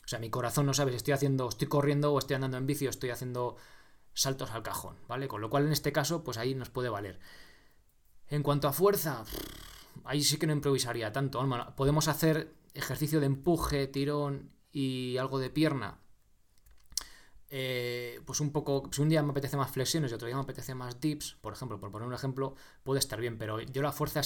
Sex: male